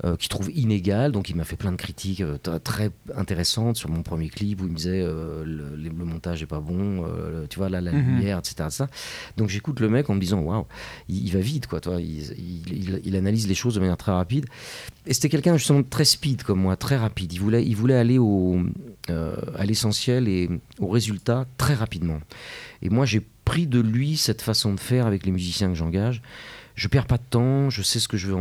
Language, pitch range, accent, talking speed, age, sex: French, 90-120 Hz, French, 235 wpm, 40-59, male